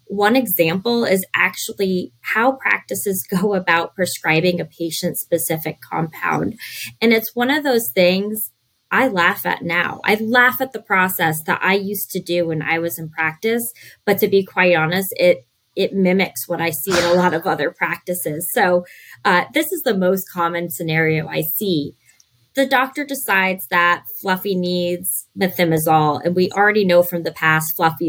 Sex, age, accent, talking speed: female, 20-39, American, 170 wpm